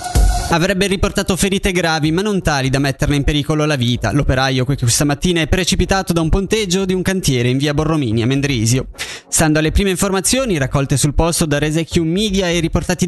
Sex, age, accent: male, 20-39, native